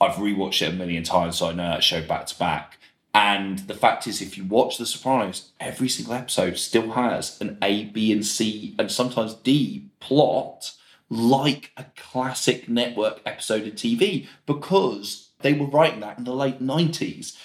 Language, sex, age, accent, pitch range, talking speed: English, male, 20-39, British, 105-130 Hz, 180 wpm